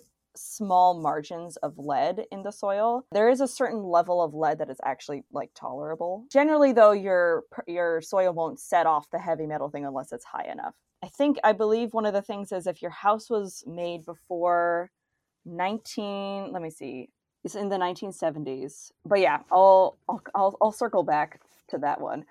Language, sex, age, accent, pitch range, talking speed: English, female, 20-39, American, 155-205 Hz, 185 wpm